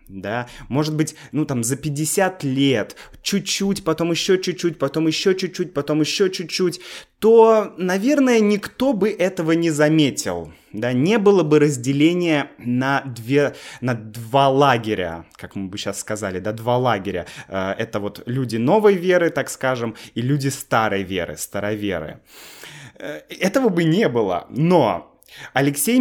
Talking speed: 145 wpm